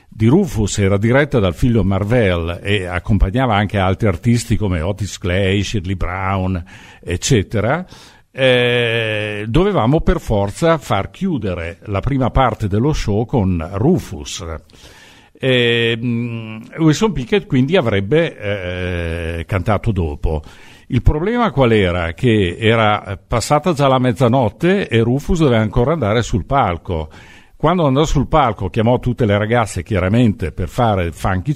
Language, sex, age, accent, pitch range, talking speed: Italian, male, 50-69, native, 95-125 Hz, 130 wpm